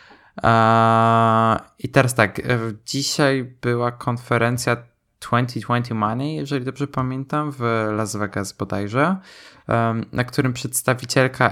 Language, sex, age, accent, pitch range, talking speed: Polish, male, 20-39, native, 110-130 Hz, 95 wpm